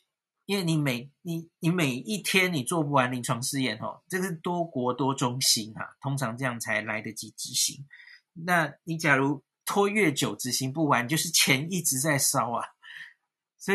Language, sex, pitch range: Chinese, male, 125-155 Hz